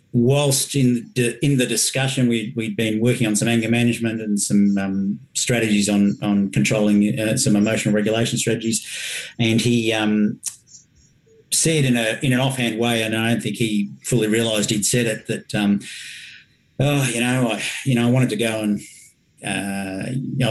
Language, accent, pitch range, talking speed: English, Australian, 105-125 Hz, 180 wpm